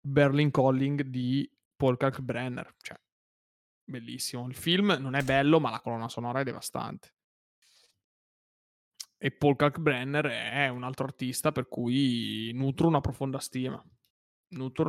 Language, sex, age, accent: Italian, male, 20-39, native